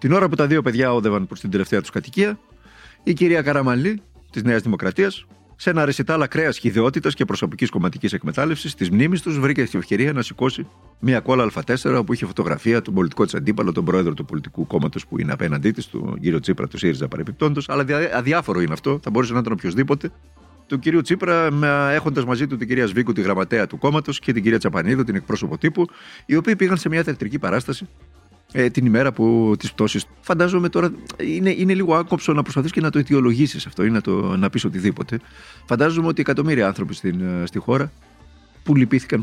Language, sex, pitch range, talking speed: Greek, male, 105-160 Hz, 140 wpm